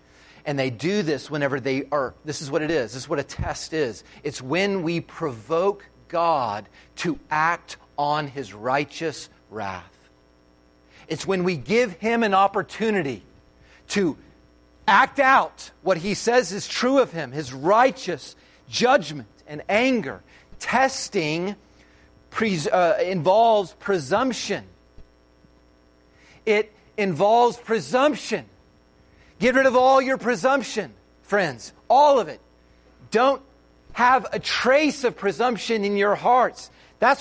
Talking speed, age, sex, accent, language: 125 wpm, 40-59, male, American, English